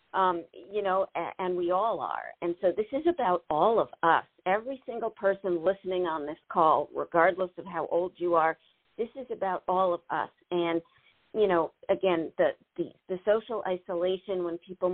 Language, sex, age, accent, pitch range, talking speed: English, female, 50-69, American, 175-205 Hz, 175 wpm